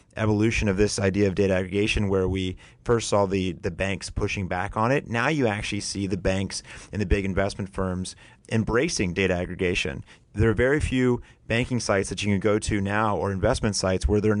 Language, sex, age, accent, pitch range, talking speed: English, male, 30-49, American, 95-110 Hz, 205 wpm